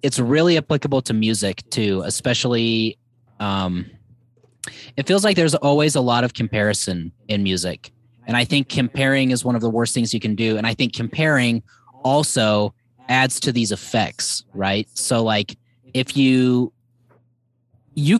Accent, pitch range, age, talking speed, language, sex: American, 110-135 Hz, 20-39, 155 wpm, English, male